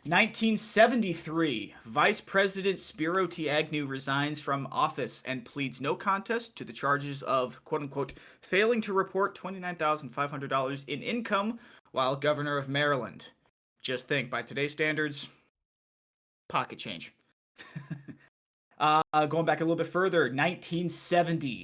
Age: 20-39